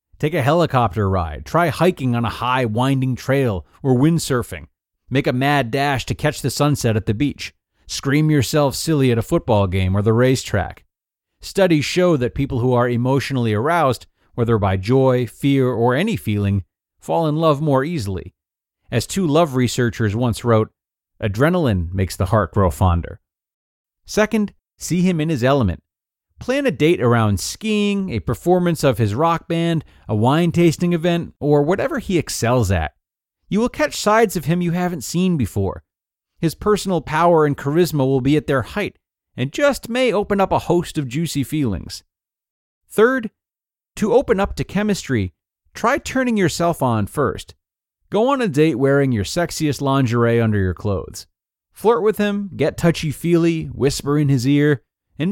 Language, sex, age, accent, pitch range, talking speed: English, male, 40-59, American, 110-170 Hz, 165 wpm